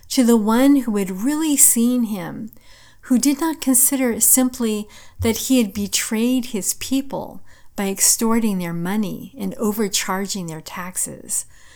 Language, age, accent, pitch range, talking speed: English, 50-69, American, 185-245 Hz, 145 wpm